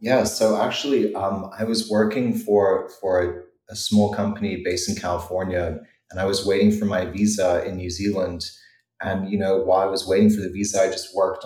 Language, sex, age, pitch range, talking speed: English, male, 20-39, 90-100 Hz, 200 wpm